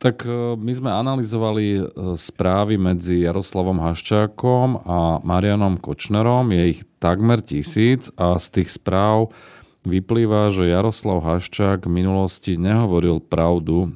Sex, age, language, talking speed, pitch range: male, 30-49, Slovak, 115 wpm, 80-100 Hz